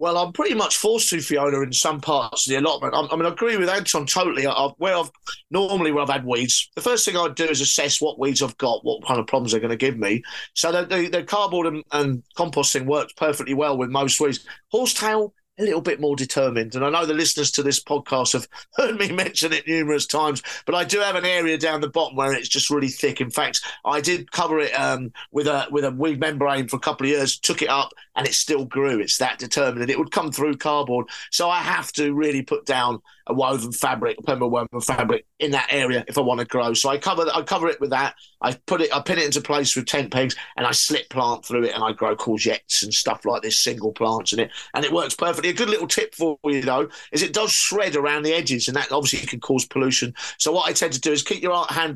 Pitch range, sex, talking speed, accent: 135-165 Hz, male, 255 wpm, British